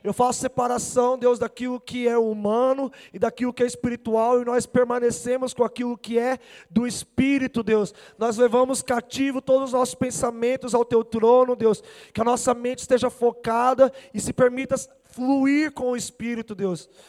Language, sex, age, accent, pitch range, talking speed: Portuguese, male, 20-39, Brazilian, 235-290 Hz, 170 wpm